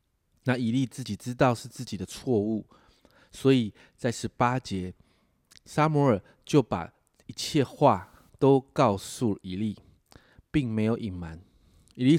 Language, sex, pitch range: Chinese, male, 105-130 Hz